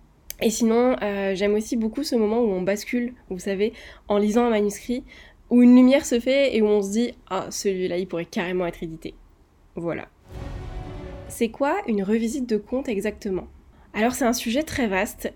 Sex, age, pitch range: female, 20-39, 195-235 Hz